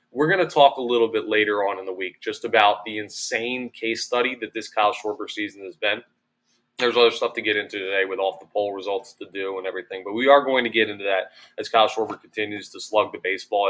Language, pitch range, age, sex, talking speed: English, 105-150 Hz, 20-39, male, 250 wpm